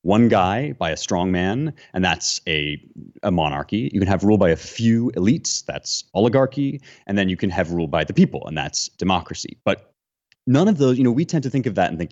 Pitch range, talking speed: 85-115 Hz, 235 wpm